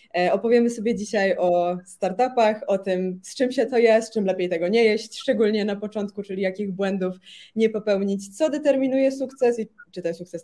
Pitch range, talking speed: 175-225 Hz, 185 wpm